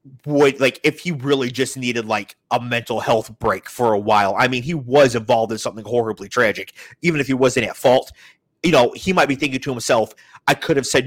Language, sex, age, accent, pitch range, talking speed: English, male, 30-49, American, 120-150 Hz, 230 wpm